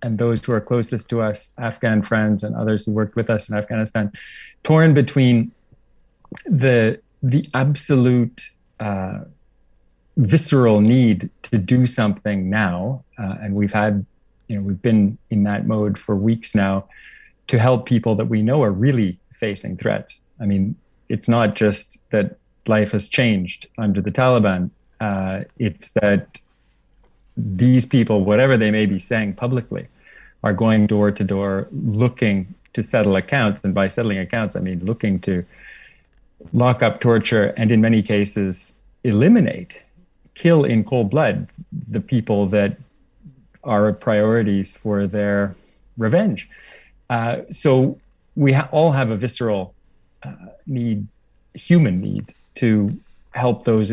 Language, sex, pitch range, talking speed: English, male, 100-125 Hz, 140 wpm